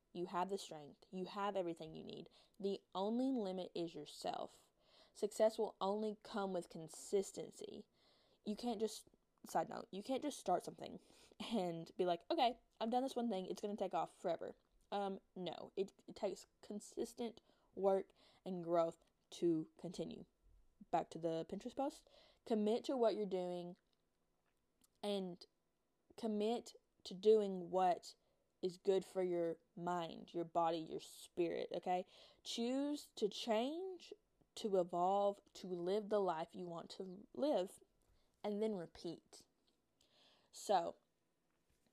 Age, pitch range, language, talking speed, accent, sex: 10-29, 175-220 Hz, English, 140 wpm, American, female